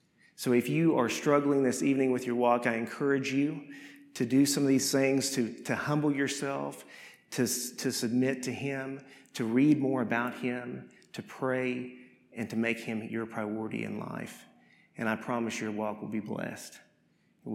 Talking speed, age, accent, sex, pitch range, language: 180 wpm, 40-59, American, male, 110-130 Hz, English